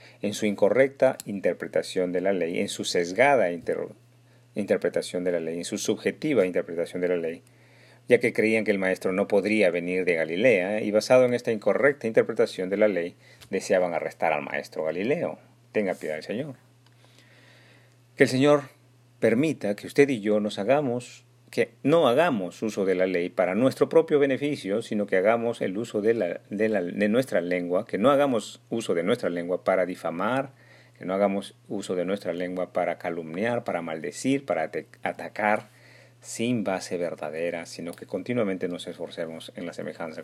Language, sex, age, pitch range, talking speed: Spanish, male, 40-59, 90-125 Hz, 170 wpm